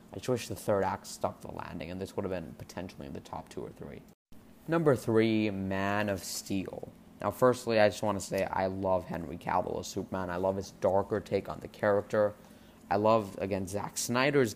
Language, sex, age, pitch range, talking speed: English, male, 20-39, 95-110 Hz, 215 wpm